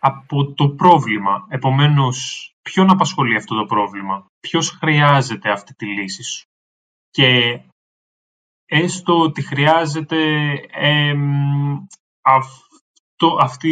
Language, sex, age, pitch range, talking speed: Greek, male, 20-39, 130-170 Hz, 90 wpm